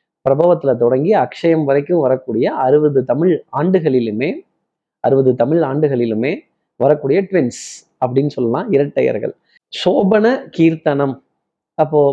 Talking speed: 95 wpm